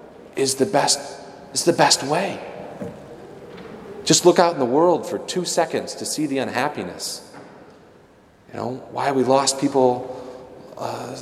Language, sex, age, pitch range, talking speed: English, male, 30-49, 125-165 Hz, 150 wpm